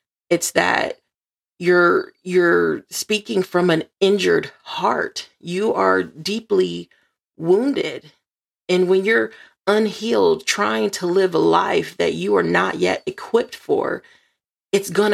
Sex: female